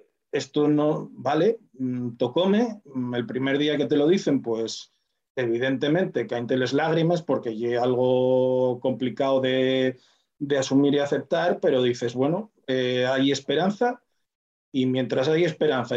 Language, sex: Spanish, male